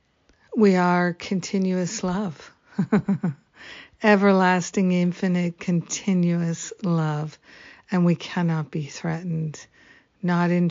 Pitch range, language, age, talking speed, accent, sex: 165-185 Hz, English, 50-69, 85 wpm, American, female